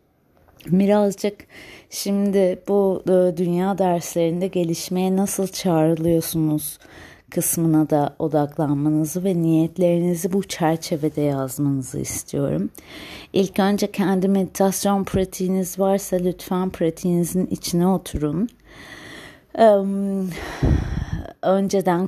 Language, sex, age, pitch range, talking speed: Turkish, female, 30-49, 165-195 Hz, 75 wpm